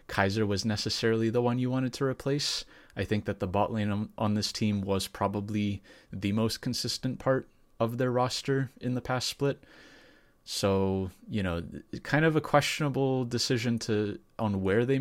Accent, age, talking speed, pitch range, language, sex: American, 20-39, 175 wpm, 95-115 Hz, English, male